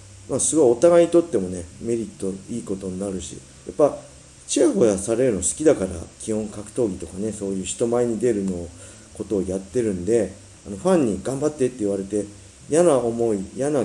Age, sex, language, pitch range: 40-59, male, Japanese, 90-120 Hz